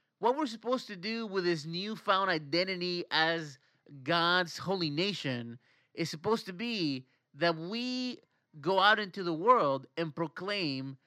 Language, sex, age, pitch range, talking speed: English, male, 30-49, 155-220 Hz, 140 wpm